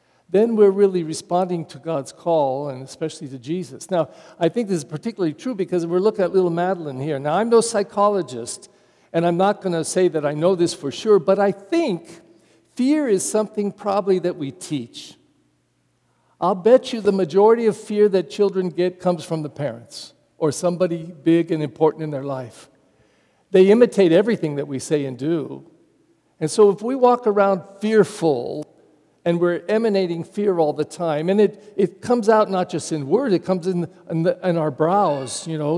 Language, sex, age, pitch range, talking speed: English, male, 50-69, 155-190 Hz, 195 wpm